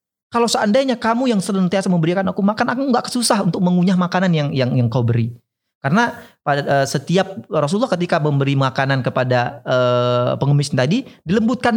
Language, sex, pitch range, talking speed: Indonesian, male, 125-190 Hz, 160 wpm